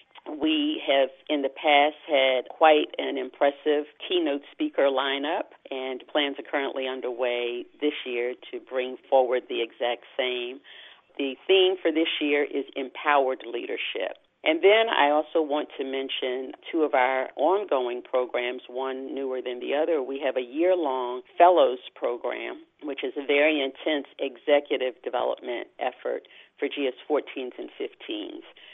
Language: English